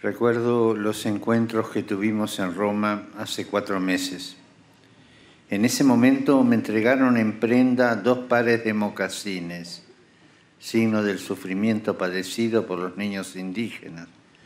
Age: 60-79